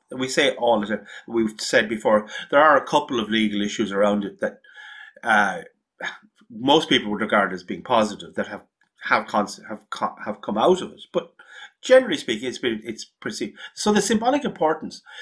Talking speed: 180 wpm